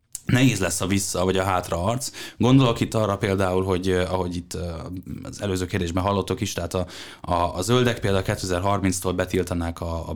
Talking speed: 175 wpm